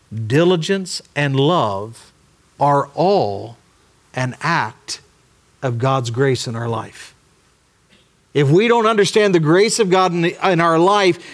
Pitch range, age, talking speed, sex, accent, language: 145-195 Hz, 50-69, 140 wpm, male, American, English